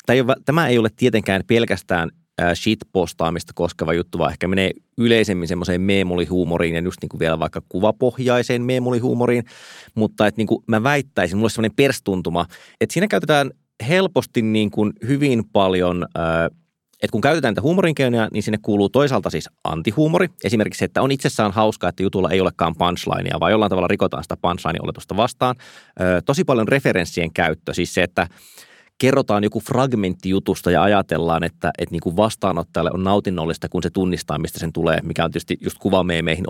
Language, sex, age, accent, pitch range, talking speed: Finnish, male, 30-49, native, 90-120 Hz, 170 wpm